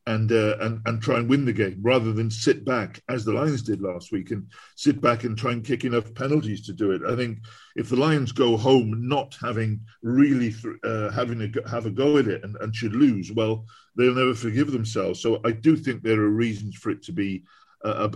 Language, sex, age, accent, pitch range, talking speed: English, male, 50-69, British, 105-125 Hz, 235 wpm